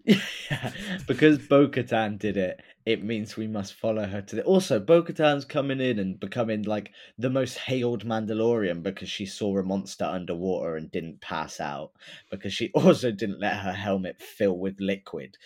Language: English